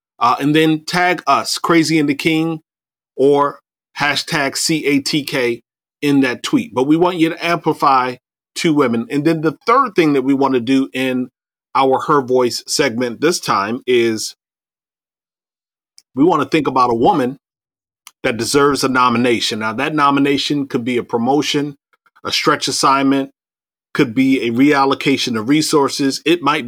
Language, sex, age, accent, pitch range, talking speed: English, male, 30-49, American, 130-155 Hz, 165 wpm